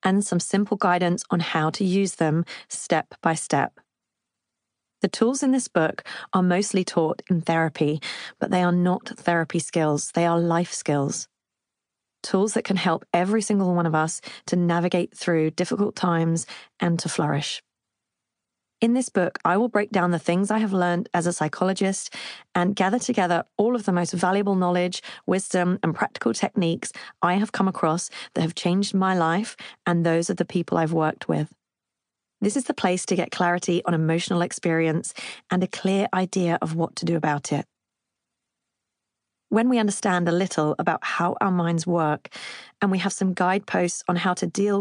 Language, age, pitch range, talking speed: English, 30-49, 170-195 Hz, 180 wpm